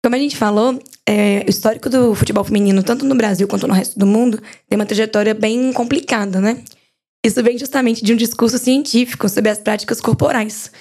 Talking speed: 190 wpm